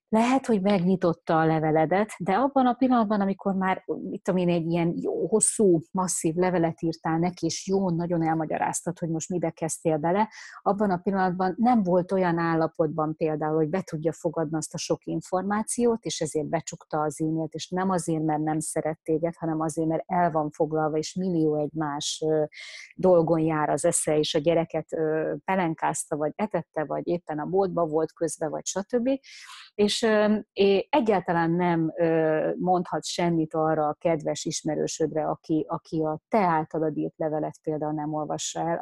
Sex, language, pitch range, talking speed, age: female, Hungarian, 155-185 Hz, 160 wpm, 30-49